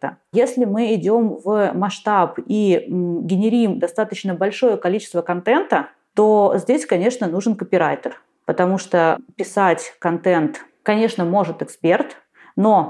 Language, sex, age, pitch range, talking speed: Russian, female, 30-49, 175-225 Hz, 110 wpm